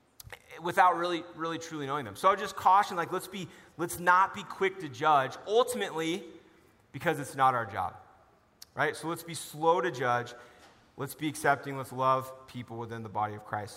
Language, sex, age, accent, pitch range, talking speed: English, male, 30-49, American, 130-165 Hz, 185 wpm